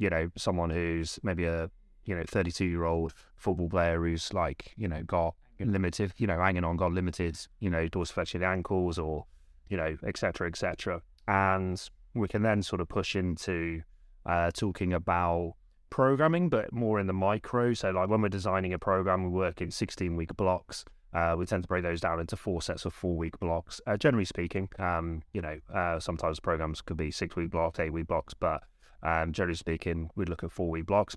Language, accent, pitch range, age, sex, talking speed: English, British, 85-95 Hz, 20-39, male, 205 wpm